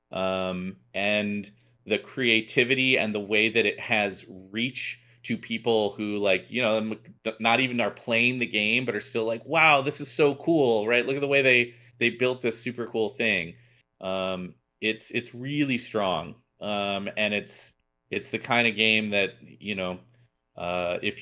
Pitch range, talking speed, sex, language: 95-115 Hz, 175 wpm, male, English